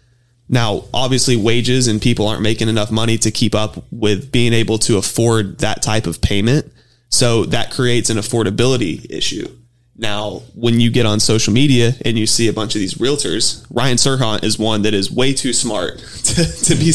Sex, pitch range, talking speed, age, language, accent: male, 110-130 Hz, 190 wpm, 20-39, English, American